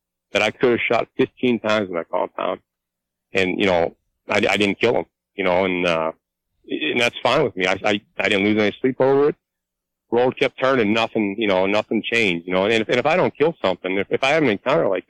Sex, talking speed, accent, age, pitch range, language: male, 245 wpm, American, 40-59, 85-110 Hz, English